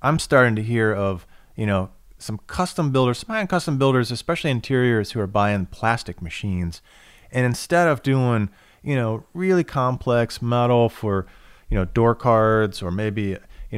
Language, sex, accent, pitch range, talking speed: English, male, American, 105-130 Hz, 160 wpm